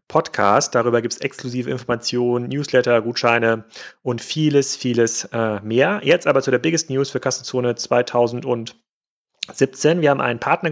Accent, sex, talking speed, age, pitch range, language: German, male, 145 wpm, 40-59, 120-140 Hz, German